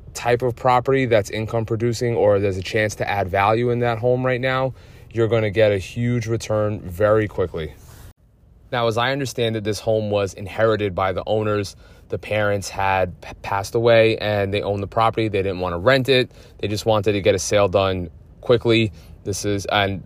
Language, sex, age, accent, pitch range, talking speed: English, male, 20-39, American, 100-115 Hz, 195 wpm